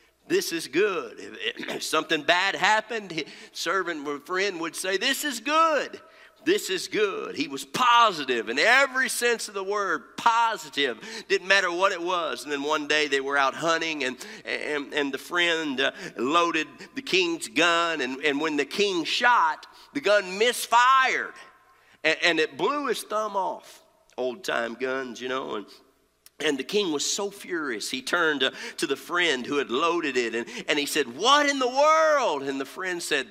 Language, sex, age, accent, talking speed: English, male, 50-69, American, 180 wpm